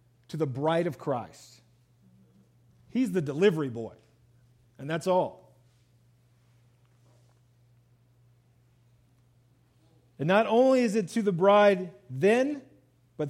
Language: English